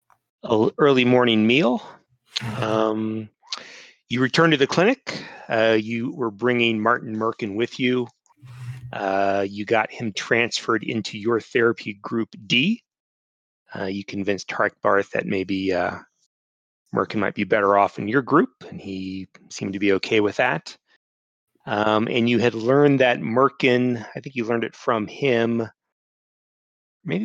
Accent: American